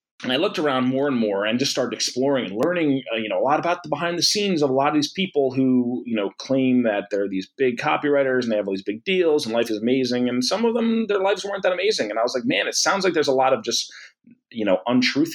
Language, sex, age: English, male, 30-49